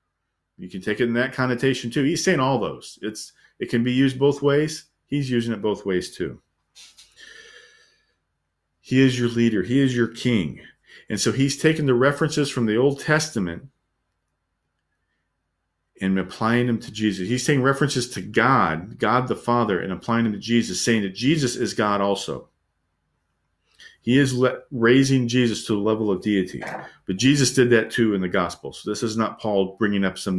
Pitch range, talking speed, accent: 95-125 Hz, 180 wpm, American